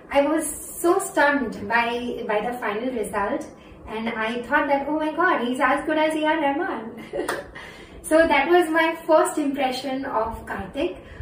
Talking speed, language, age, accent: 165 wpm, Hindi, 20-39, native